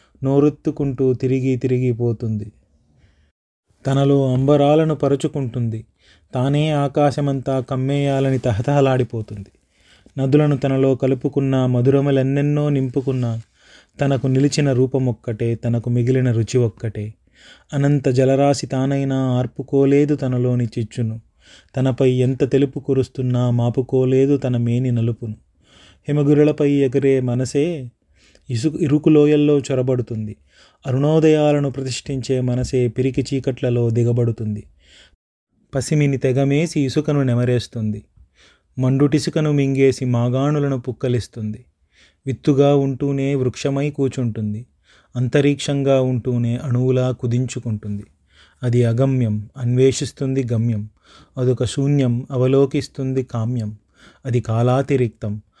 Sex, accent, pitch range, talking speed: male, Indian, 120-140 Hz, 65 wpm